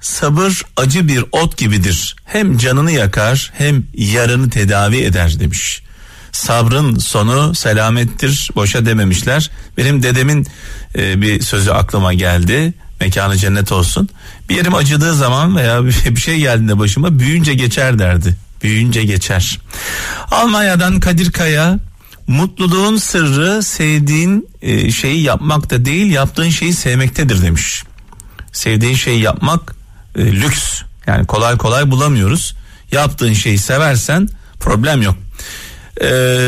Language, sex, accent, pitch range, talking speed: Turkish, male, native, 105-150 Hz, 115 wpm